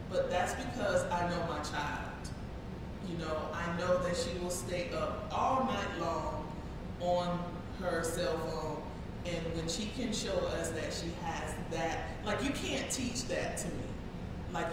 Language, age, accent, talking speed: English, 30-49, American, 165 wpm